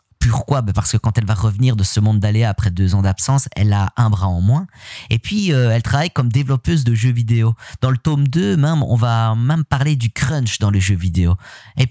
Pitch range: 105-135 Hz